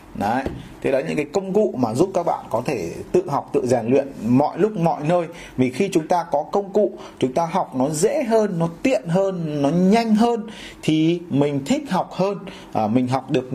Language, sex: Vietnamese, male